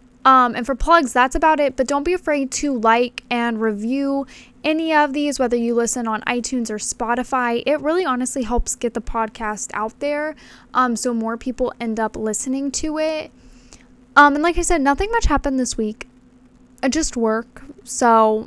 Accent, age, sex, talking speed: American, 10-29, female, 185 wpm